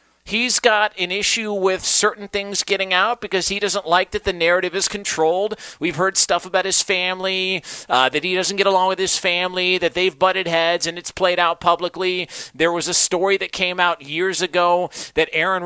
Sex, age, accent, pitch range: male, 40-59, American, 165-200 Hz